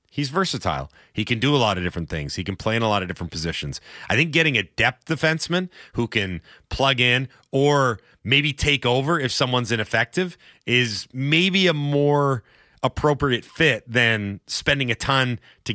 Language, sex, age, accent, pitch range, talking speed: English, male, 30-49, American, 110-145 Hz, 180 wpm